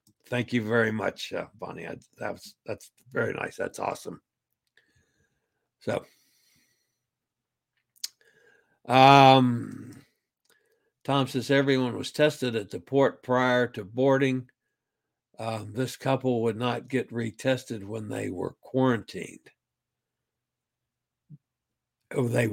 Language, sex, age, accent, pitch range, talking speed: English, male, 60-79, American, 120-150 Hz, 100 wpm